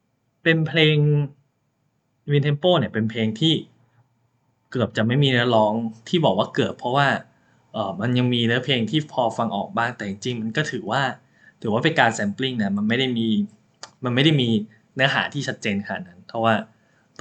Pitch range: 115-145 Hz